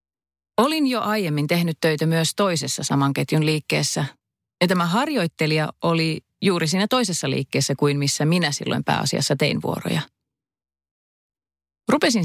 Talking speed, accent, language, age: 120 wpm, native, Finnish, 30-49